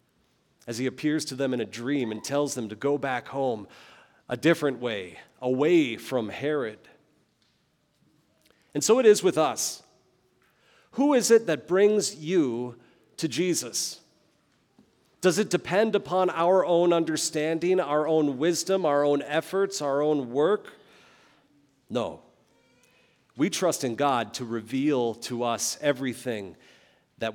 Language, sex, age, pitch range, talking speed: English, male, 40-59, 125-185 Hz, 135 wpm